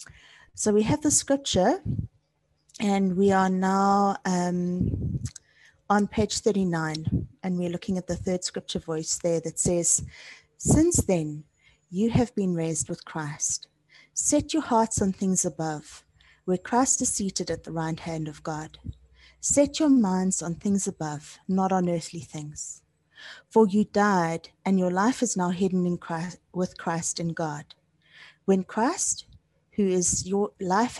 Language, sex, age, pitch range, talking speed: English, female, 30-49, 165-210 Hz, 155 wpm